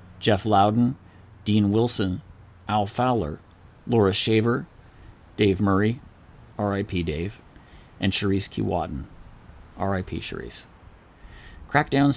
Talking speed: 90 wpm